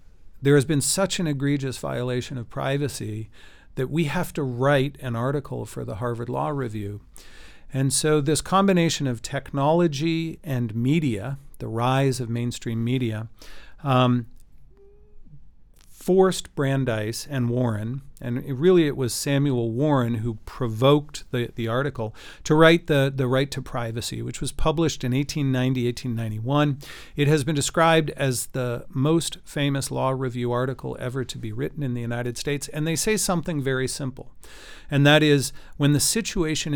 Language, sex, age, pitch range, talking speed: Swedish, male, 50-69, 120-150 Hz, 155 wpm